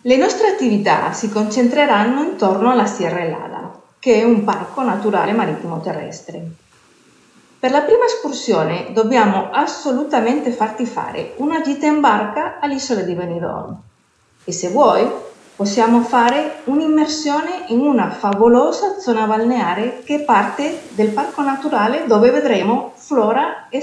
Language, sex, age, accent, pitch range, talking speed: Italian, female, 40-59, native, 205-275 Hz, 130 wpm